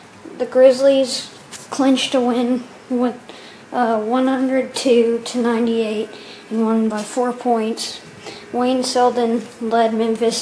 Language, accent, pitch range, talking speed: English, American, 230-260 Hz, 105 wpm